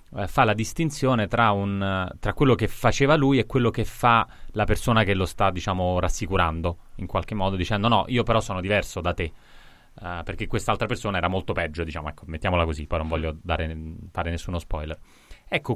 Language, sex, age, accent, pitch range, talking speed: Italian, male, 30-49, native, 90-115 Hz, 185 wpm